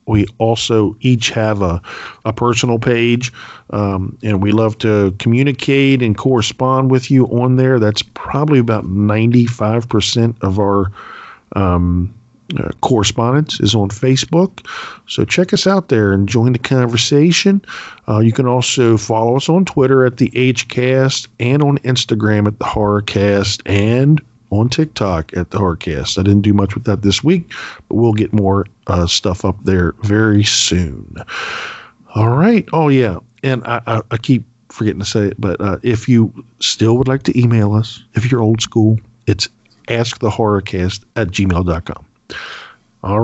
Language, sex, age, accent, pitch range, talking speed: English, male, 40-59, American, 105-130 Hz, 160 wpm